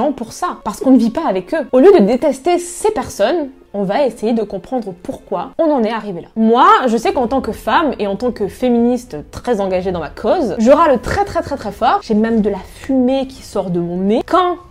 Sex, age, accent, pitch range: female, 20-39, French, 200-265 Hz